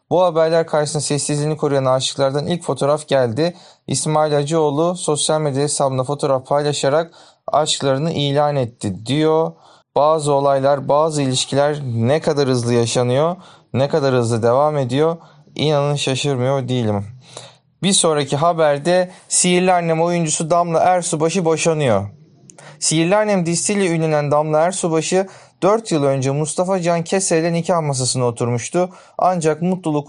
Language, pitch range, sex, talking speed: Turkish, 140-180 Hz, male, 125 wpm